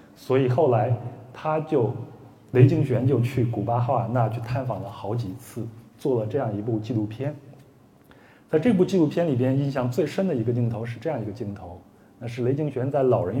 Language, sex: Chinese, male